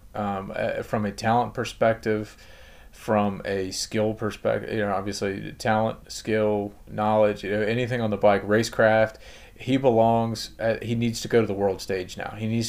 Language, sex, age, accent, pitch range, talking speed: English, male, 30-49, American, 100-115 Hz, 170 wpm